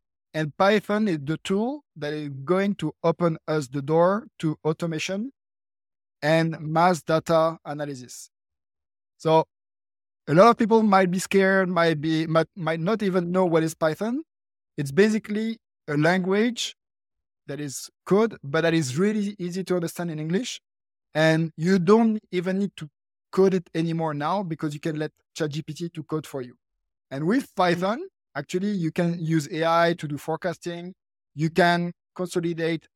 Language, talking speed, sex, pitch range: English, 155 wpm, male, 150-185 Hz